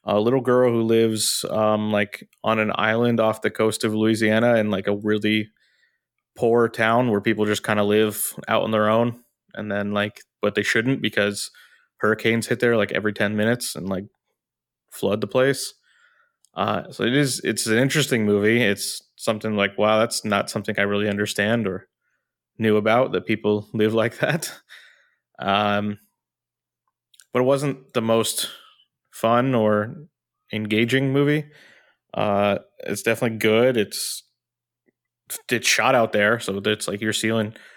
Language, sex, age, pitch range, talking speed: English, male, 20-39, 105-120 Hz, 160 wpm